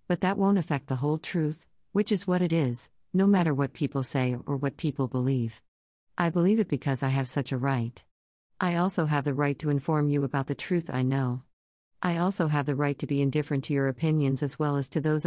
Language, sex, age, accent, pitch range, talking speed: English, female, 40-59, American, 130-170 Hz, 230 wpm